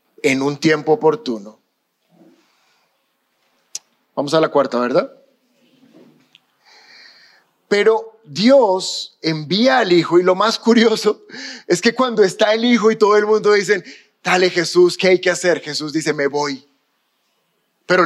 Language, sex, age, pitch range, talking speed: Spanish, male, 30-49, 165-225 Hz, 135 wpm